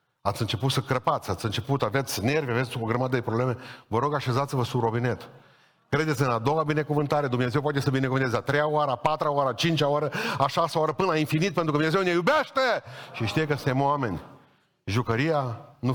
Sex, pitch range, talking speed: male, 105-140 Hz, 205 wpm